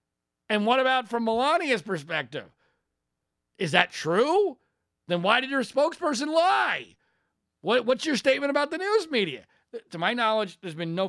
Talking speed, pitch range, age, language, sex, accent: 155 wpm, 185-275 Hz, 40-59, English, male, American